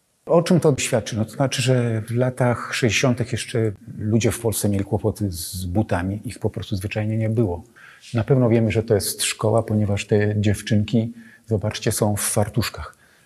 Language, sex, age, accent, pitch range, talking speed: Polish, male, 40-59, native, 105-125 Hz, 175 wpm